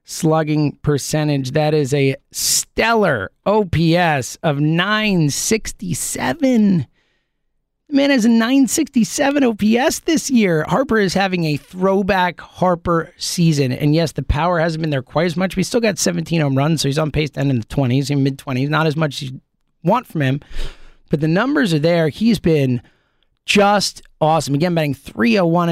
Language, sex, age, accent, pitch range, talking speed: English, male, 30-49, American, 150-195 Hz, 165 wpm